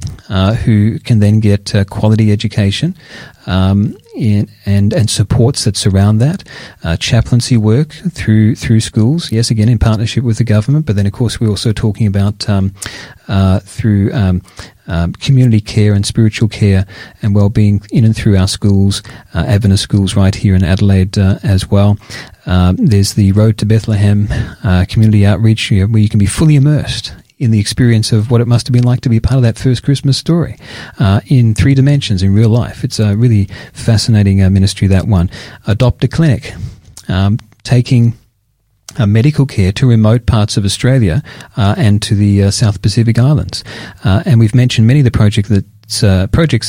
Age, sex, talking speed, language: 40-59, male, 180 wpm, English